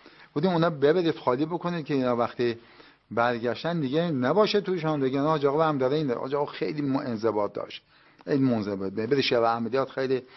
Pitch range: 120-155 Hz